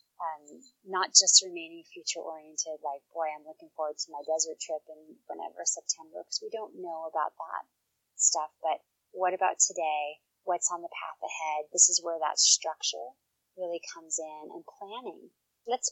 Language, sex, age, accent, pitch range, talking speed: English, female, 30-49, American, 160-195 Hz, 175 wpm